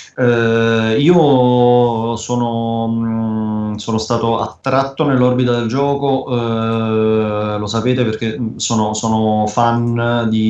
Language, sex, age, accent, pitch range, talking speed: Italian, male, 20-39, native, 110-125 Hz, 105 wpm